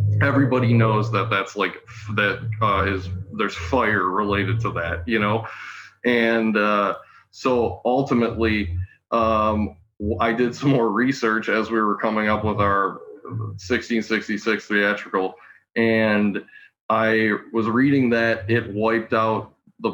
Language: English